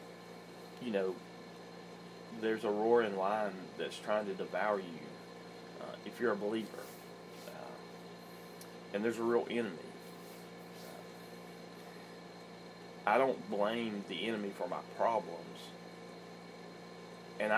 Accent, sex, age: American, male, 40-59